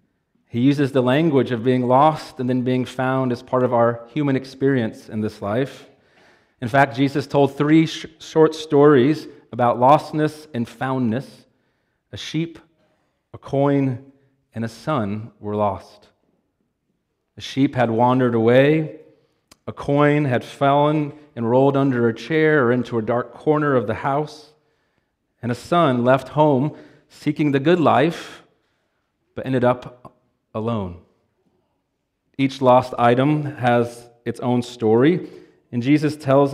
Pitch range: 115-145 Hz